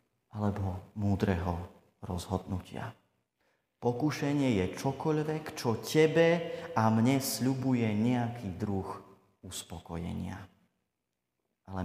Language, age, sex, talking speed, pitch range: Slovak, 30-49, male, 75 wpm, 100-135 Hz